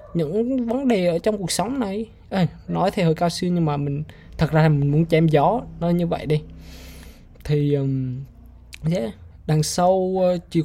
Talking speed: 195 wpm